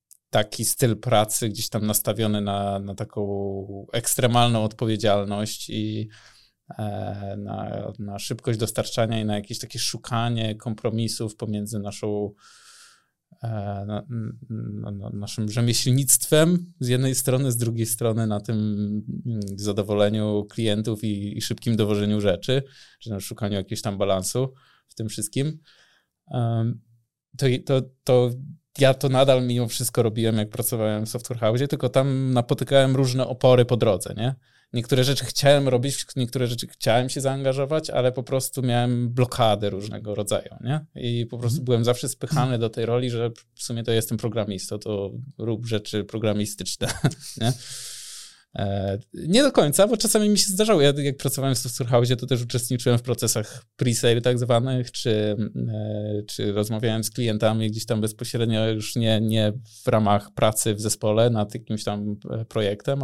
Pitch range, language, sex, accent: 110-125 Hz, Polish, male, native